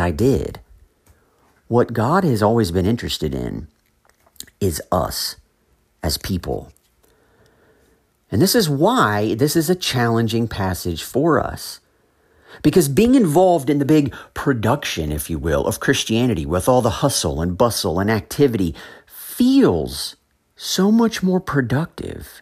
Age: 50-69